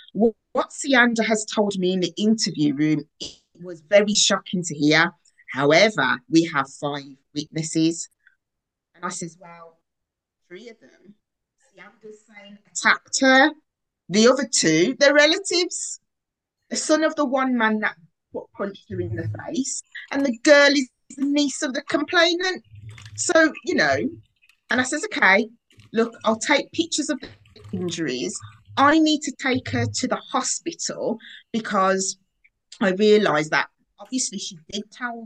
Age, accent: 20-39, British